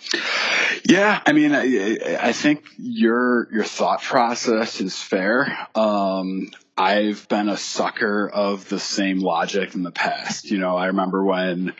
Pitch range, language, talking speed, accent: 95-110 Hz, English, 150 wpm, American